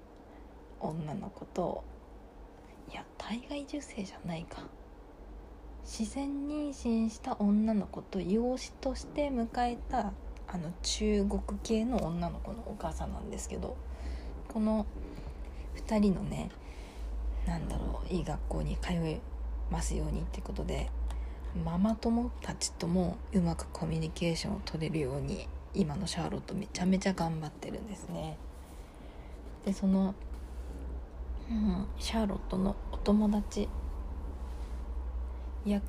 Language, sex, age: Japanese, female, 20-39